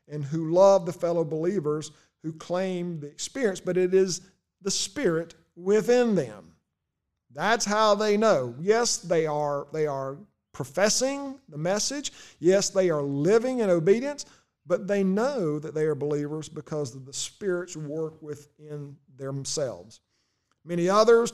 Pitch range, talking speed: 155-205 Hz, 145 wpm